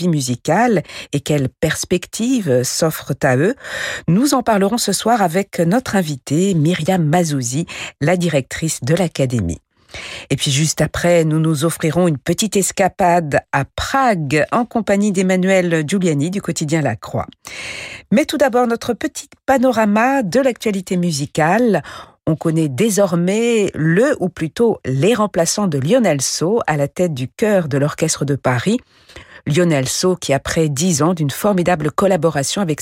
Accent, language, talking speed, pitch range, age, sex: French, French, 145 wpm, 145-195 Hz, 50-69, female